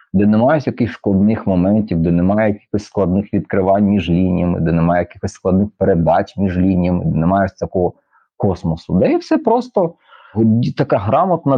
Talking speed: 145 wpm